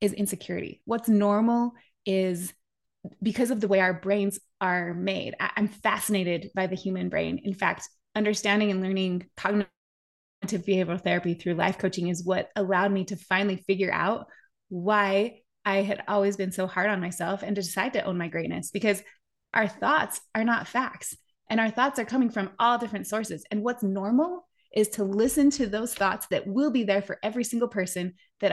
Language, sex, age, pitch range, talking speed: English, female, 20-39, 190-215 Hz, 185 wpm